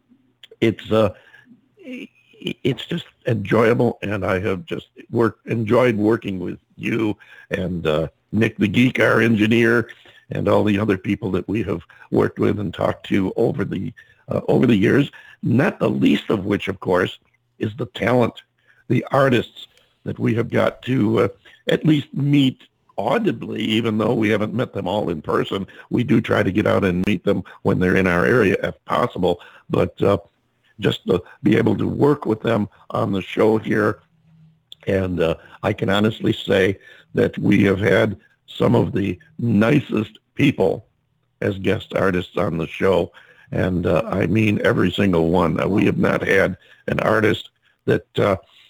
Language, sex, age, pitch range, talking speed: English, male, 60-79, 95-110 Hz, 170 wpm